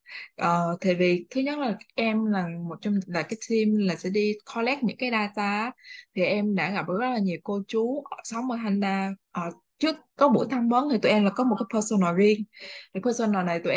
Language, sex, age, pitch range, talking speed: Vietnamese, female, 20-39, 185-250 Hz, 225 wpm